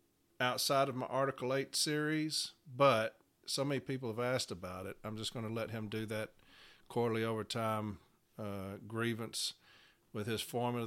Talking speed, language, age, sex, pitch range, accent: 160 wpm, English, 50-69, male, 115-135 Hz, American